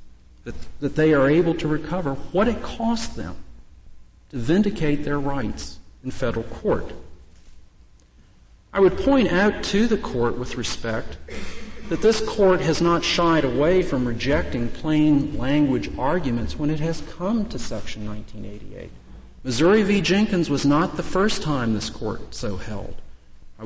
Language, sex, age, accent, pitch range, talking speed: English, male, 50-69, American, 115-165 Hz, 145 wpm